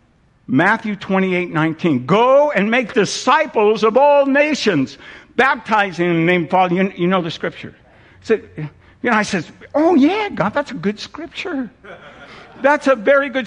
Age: 60-79